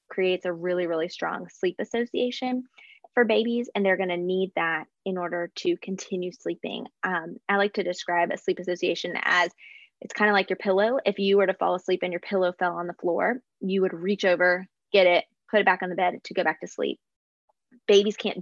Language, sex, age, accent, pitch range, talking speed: English, female, 20-39, American, 180-200 Hz, 220 wpm